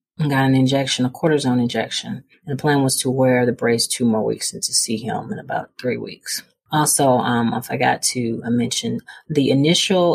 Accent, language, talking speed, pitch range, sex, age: American, English, 195 wpm, 120-160 Hz, female, 30-49